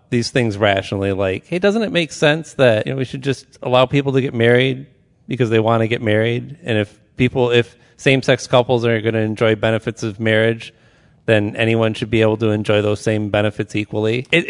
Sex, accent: male, American